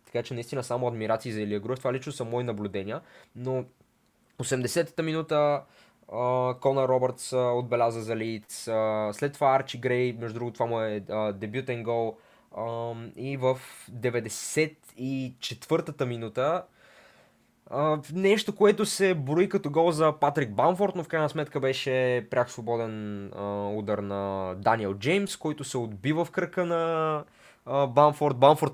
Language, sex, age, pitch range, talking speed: Bulgarian, male, 20-39, 115-145 Hz, 150 wpm